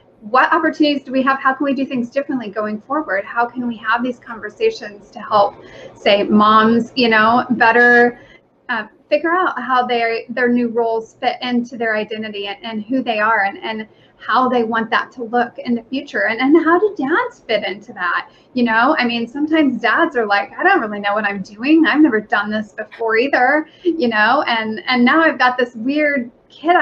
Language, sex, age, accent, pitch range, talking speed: English, female, 30-49, American, 225-270 Hz, 210 wpm